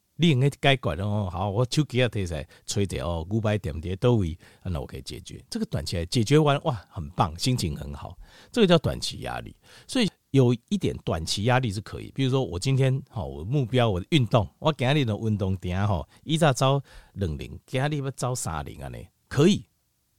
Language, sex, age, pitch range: Chinese, male, 50-69, 100-140 Hz